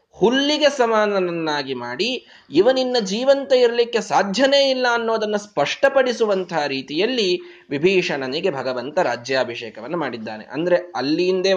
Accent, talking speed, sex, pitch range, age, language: native, 90 wpm, male, 140-220 Hz, 20-39, Kannada